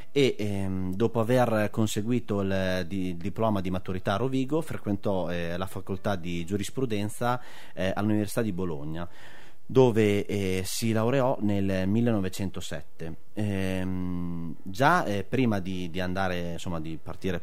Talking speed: 115 wpm